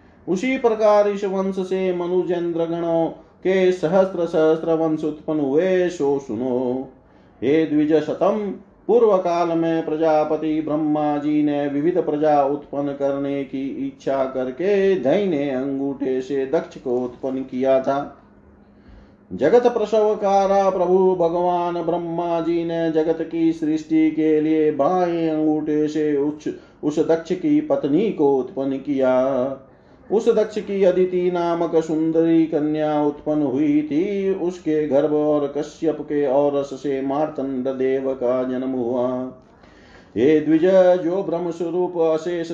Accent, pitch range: native, 145-175 Hz